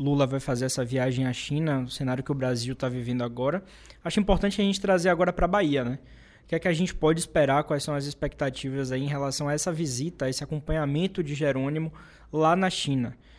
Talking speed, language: 230 wpm, Portuguese